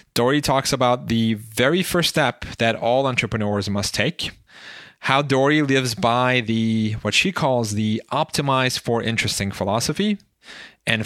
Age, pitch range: 30-49, 105-135 Hz